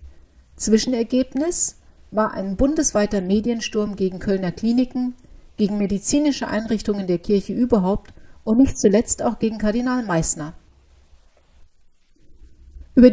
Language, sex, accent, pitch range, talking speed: German, female, German, 185-235 Hz, 100 wpm